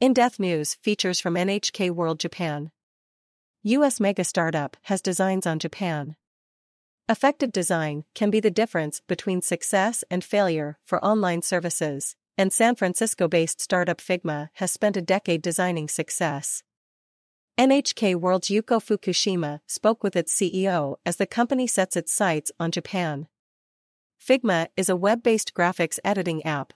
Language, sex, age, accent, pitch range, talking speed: English, female, 40-59, American, 165-200 Hz, 135 wpm